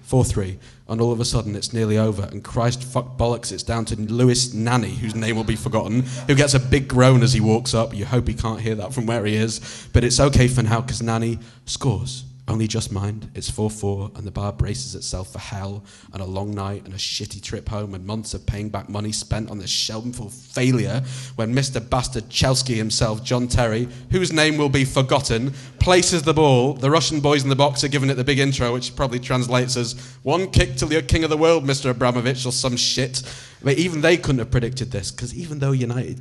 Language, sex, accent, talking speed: English, male, British, 225 wpm